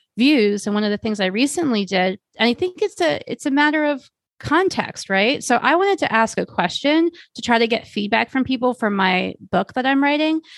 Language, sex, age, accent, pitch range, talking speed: English, female, 30-49, American, 190-240 Hz, 225 wpm